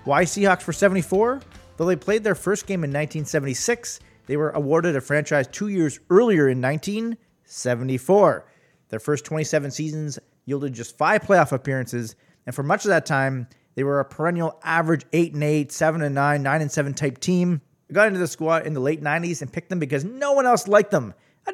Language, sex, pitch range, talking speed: English, male, 140-180 Hz, 185 wpm